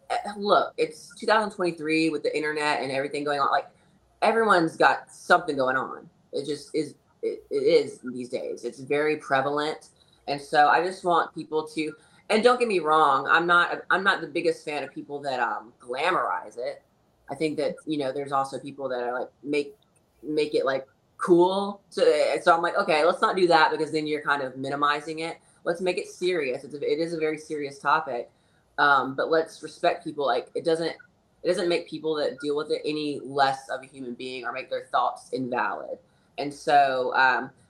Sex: female